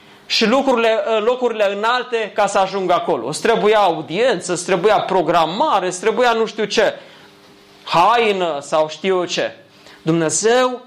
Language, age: Romanian, 30-49